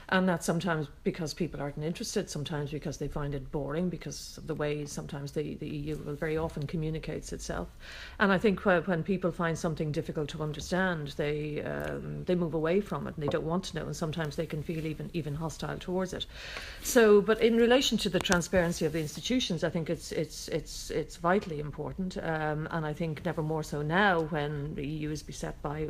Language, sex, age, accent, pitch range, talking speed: English, female, 40-59, Irish, 150-180 Hz, 210 wpm